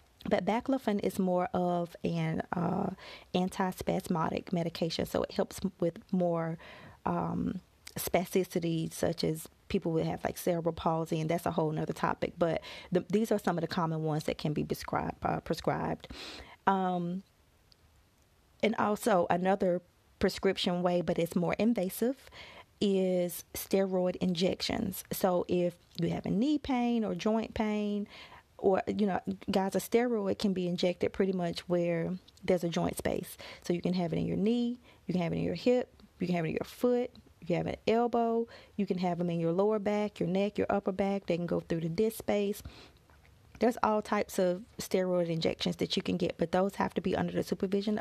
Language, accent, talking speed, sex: English, American, 185 wpm, female